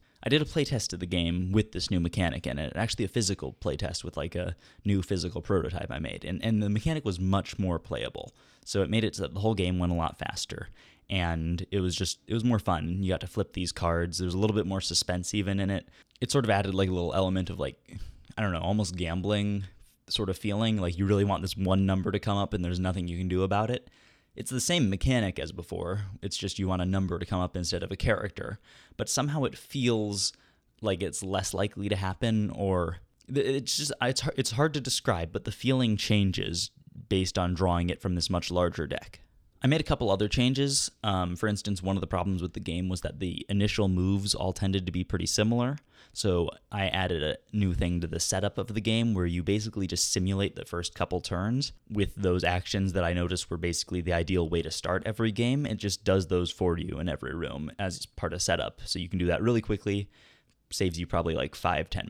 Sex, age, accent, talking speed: male, 20-39, American, 235 wpm